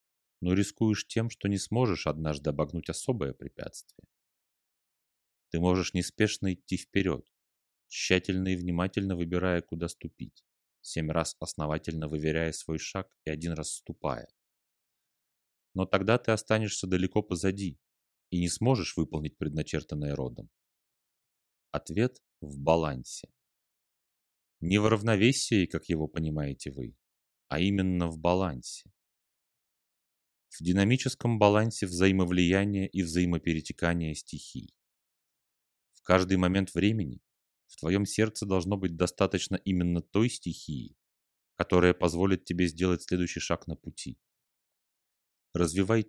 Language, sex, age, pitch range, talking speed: Russian, male, 30-49, 80-95 Hz, 110 wpm